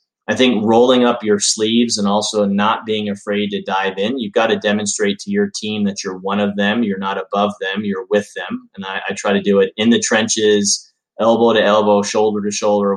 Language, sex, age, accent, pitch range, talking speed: English, male, 30-49, American, 100-125 Hz, 225 wpm